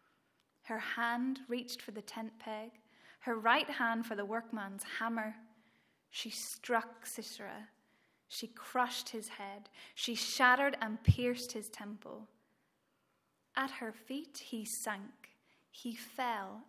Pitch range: 225-265 Hz